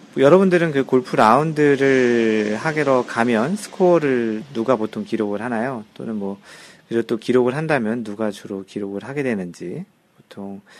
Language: Korean